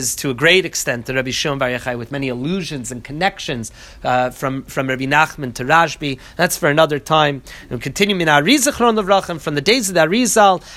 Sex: male